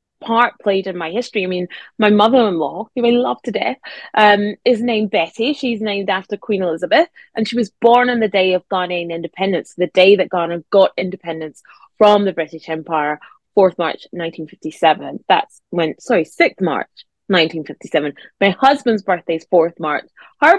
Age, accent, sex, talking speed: 20-39, British, female, 170 wpm